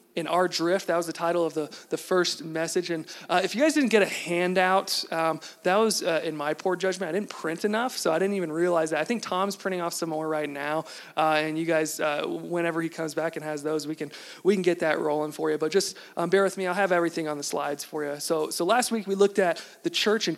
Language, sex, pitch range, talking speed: English, male, 155-180 Hz, 275 wpm